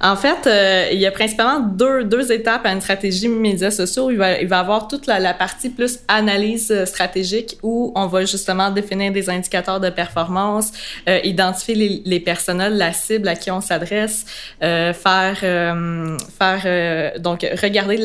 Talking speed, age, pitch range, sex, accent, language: 185 wpm, 20-39, 180-215 Hz, female, Canadian, French